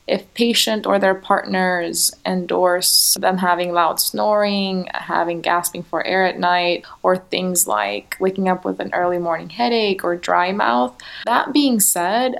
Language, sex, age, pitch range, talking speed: English, female, 20-39, 175-200 Hz, 155 wpm